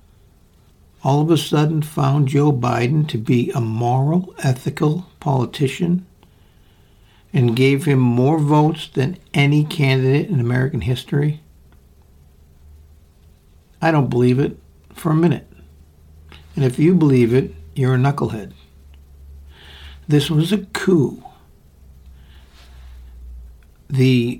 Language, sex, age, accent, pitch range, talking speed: English, male, 60-79, American, 90-145 Hz, 110 wpm